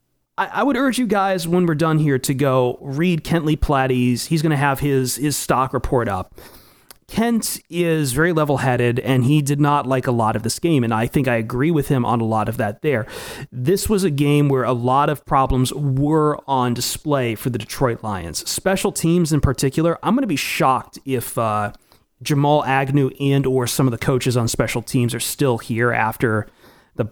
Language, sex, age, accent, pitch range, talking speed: English, male, 30-49, American, 125-155 Hz, 210 wpm